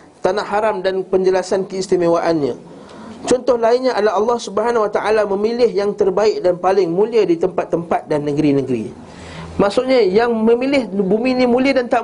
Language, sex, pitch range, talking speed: Malay, male, 165-220 Hz, 150 wpm